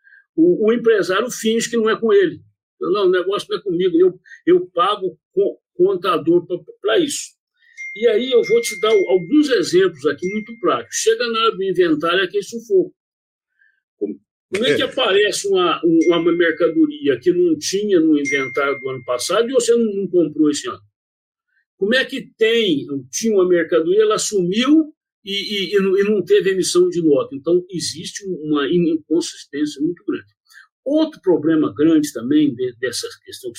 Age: 60-79